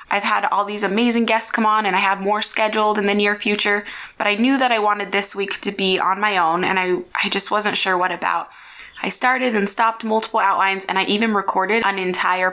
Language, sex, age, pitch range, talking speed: English, female, 20-39, 185-225 Hz, 240 wpm